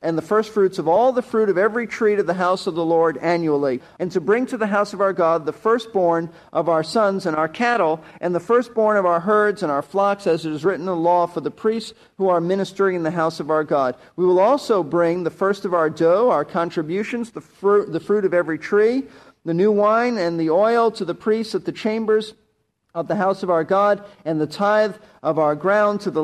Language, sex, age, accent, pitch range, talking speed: English, male, 50-69, American, 165-205 Hz, 240 wpm